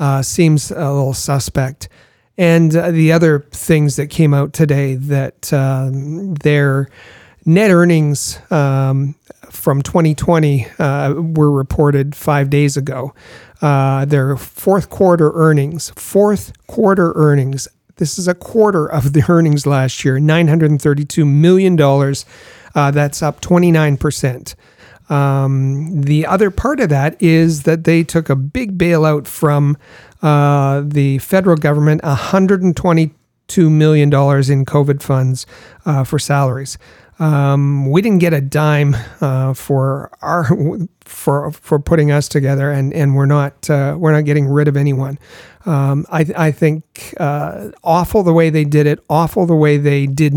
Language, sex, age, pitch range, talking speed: English, male, 40-59, 140-160 Hz, 140 wpm